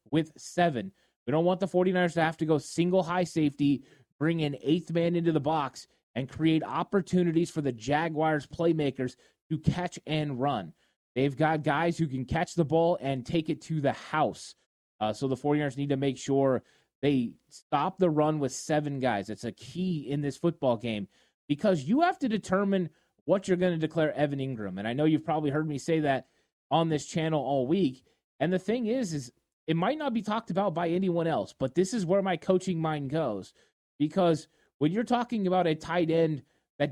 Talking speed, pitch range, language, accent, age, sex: 205 wpm, 145-180 Hz, English, American, 20-39, male